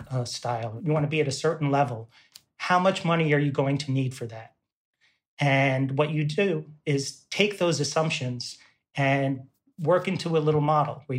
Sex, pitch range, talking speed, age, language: male, 135-155 Hz, 190 wpm, 30-49, English